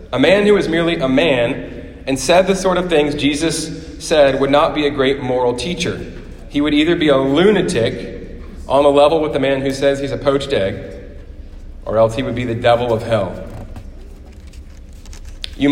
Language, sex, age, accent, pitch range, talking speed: English, male, 30-49, American, 100-150 Hz, 190 wpm